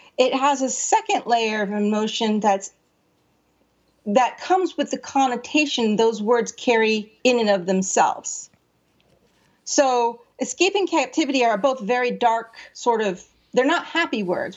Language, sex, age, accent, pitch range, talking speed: English, female, 40-59, American, 215-295 Hz, 140 wpm